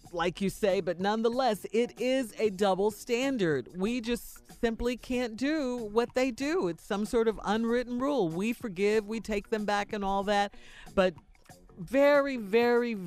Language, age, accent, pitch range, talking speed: English, 40-59, American, 165-230 Hz, 165 wpm